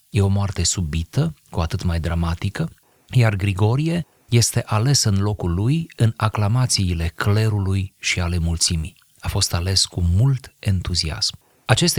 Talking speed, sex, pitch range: 140 wpm, male, 90-115 Hz